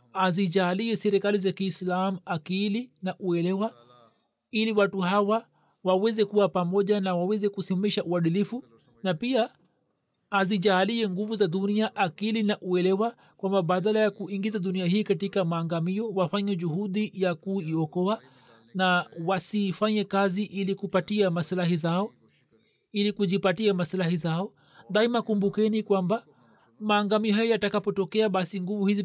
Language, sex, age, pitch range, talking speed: Swahili, male, 40-59, 175-210 Hz, 120 wpm